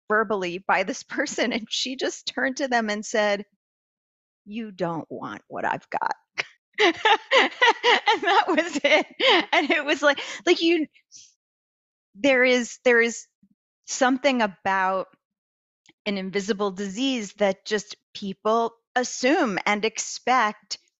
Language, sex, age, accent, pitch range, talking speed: English, female, 40-59, American, 190-270 Hz, 125 wpm